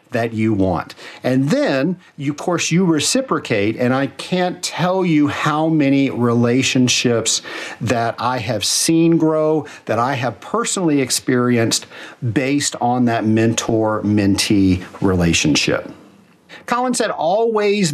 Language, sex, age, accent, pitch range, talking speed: English, male, 50-69, American, 115-155 Hz, 115 wpm